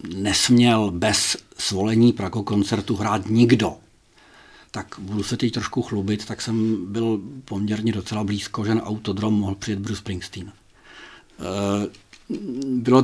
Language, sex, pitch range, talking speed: Czech, male, 100-115 Hz, 125 wpm